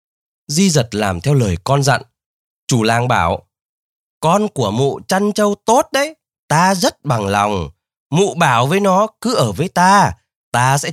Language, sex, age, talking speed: Vietnamese, male, 20-39, 170 wpm